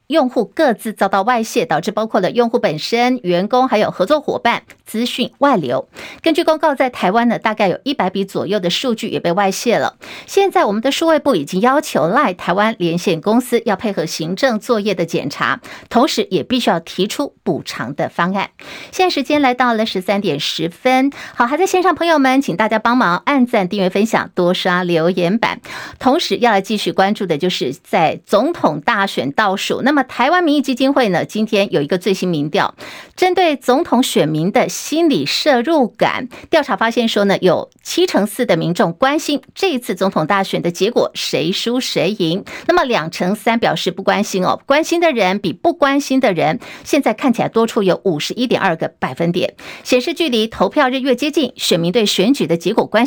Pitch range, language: 190-265 Hz, Chinese